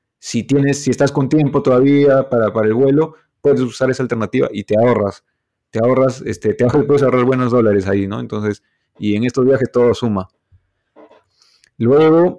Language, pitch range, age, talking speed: Spanish, 115-140 Hz, 30-49, 165 wpm